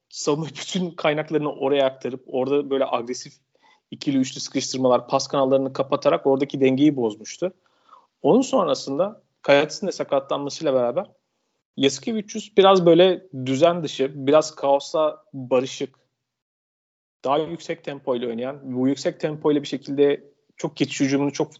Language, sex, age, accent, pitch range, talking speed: Turkish, male, 40-59, native, 135-180 Hz, 125 wpm